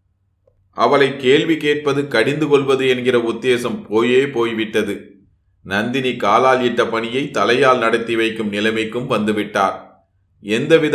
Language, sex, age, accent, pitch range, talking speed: Tamil, male, 30-49, native, 105-130 Hz, 105 wpm